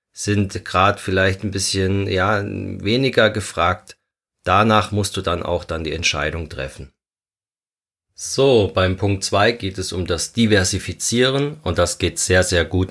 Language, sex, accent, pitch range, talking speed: German, male, German, 85-100 Hz, 150 wpm